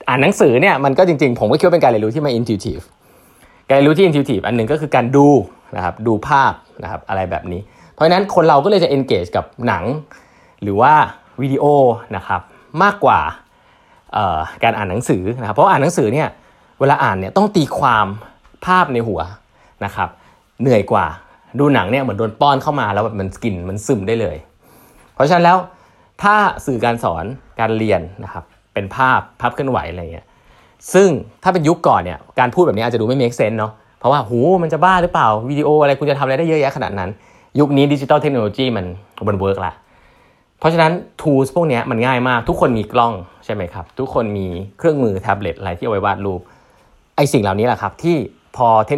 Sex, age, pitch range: male, 20-39, 105-150 Hz